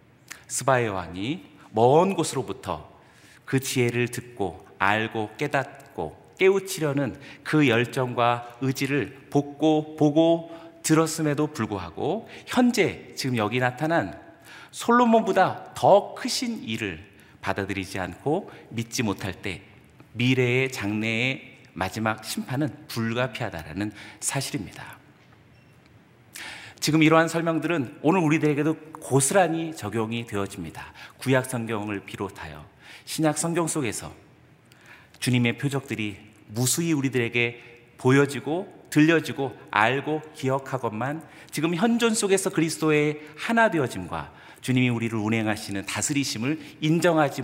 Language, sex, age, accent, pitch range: Korean, male, 40-59, native, 110-155 Hz